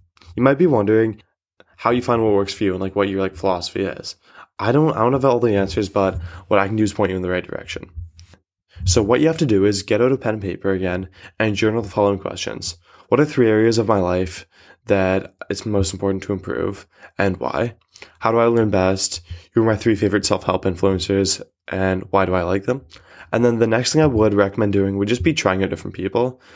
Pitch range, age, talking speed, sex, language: 95-110 Hz, 20-39, 240 wpm, male, English